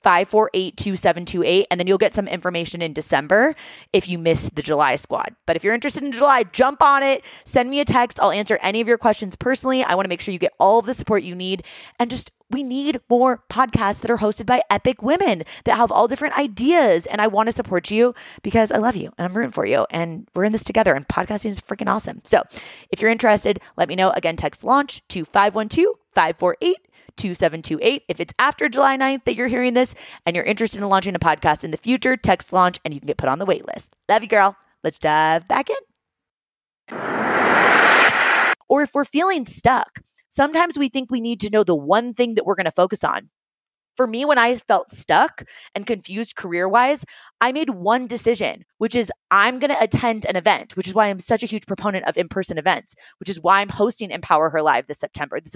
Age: 20-39